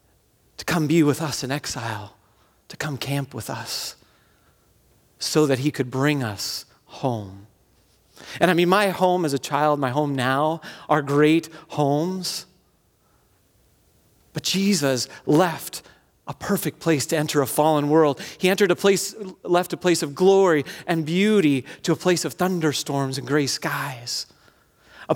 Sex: male